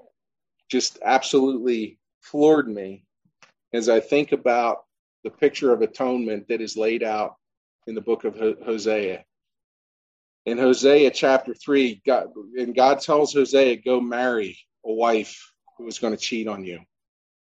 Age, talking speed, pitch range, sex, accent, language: 40-59, 140 wpm, 105-130 Hz, male, American, English